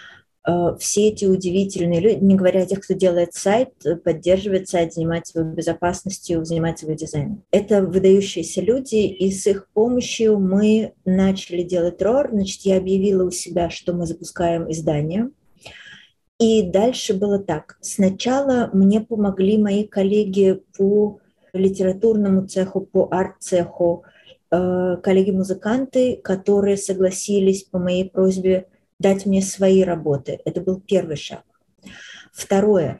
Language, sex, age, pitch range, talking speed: Russian, female, 20-39, 175-195 Hz, 125 wpm